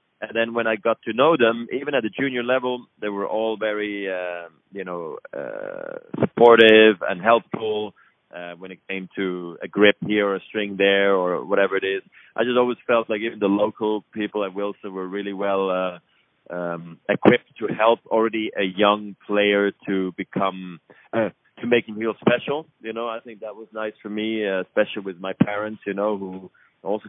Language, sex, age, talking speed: French, male, 30-49, 195 wpm